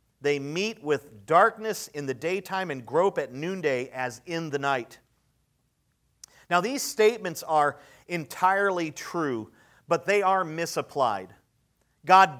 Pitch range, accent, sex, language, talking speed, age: 140-185 Hz, American, male, English, 125 wpm, 40-59